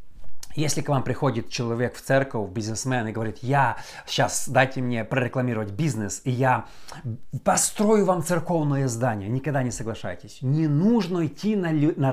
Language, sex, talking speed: Russian, male, 150 wpm